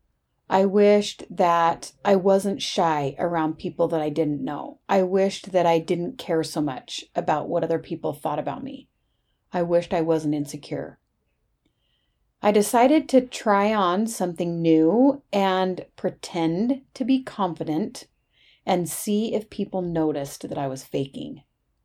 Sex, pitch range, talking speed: female, 165-205 Hz, 145 wpm